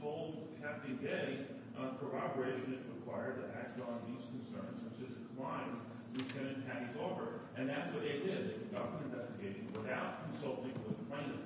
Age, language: 40-59, English